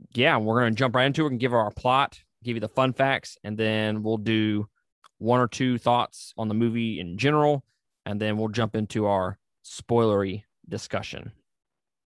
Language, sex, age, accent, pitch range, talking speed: English, male, 20-39, American, 105-130 Hz, 190 wpm